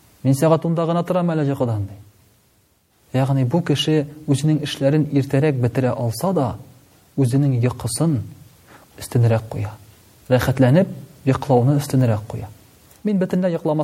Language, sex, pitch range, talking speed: Russian, male, 110-145 Hz, 105 wpm